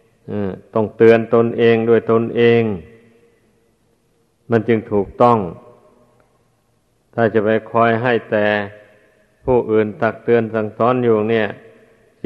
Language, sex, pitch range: Thai, male, 110-120 Hz